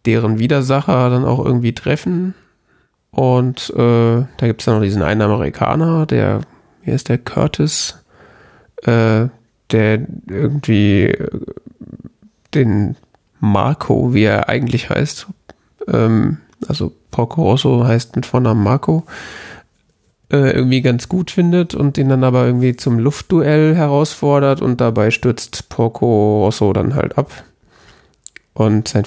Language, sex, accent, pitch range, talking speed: German, male, German, 110-145 Hz, 125 wpm